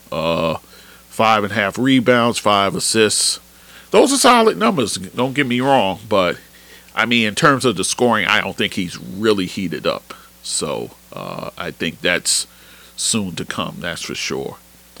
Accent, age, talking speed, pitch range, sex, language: American, 40-59, 170 wpm, 75-120 Hz, male, English